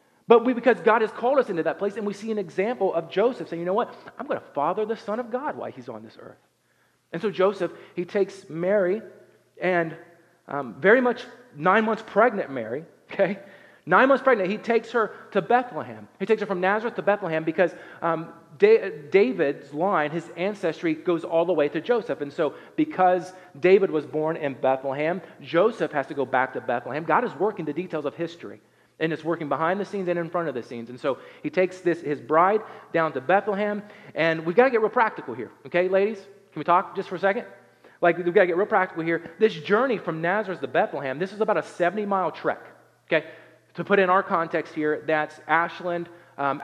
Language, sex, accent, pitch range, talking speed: English, male, American, 155-205 Hz, 215 wpm